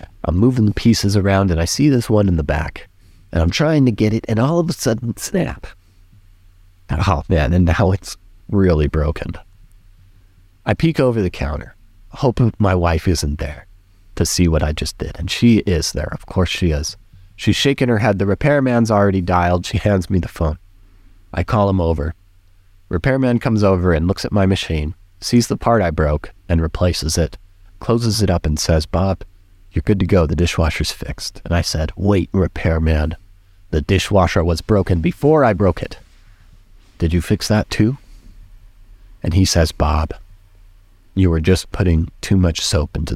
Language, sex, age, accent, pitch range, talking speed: English, male, 30-49, American, 85-105 Hz, 185 wpm